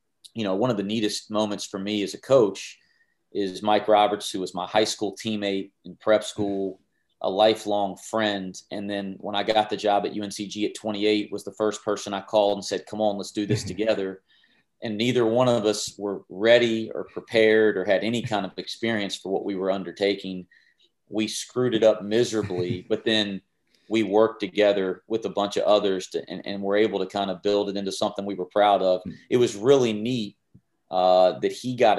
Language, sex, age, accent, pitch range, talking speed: English, male, 30-49, American, 95-105 Hz, 205 wpm